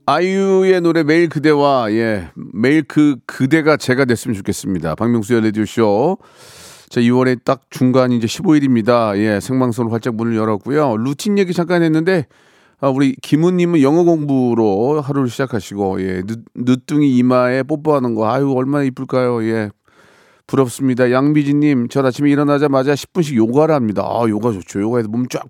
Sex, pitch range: male, 120-155 Hz